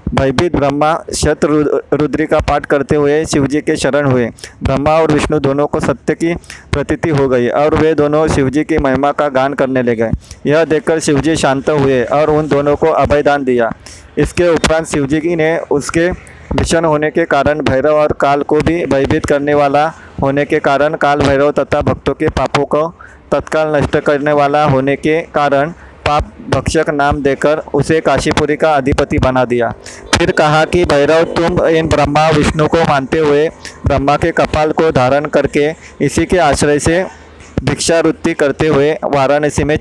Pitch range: 140-155 Hz